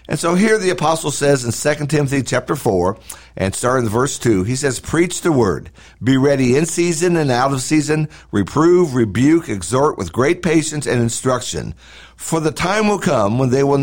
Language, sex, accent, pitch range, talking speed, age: English, male, American, 115-160 Hz, 195 wpm, 50-69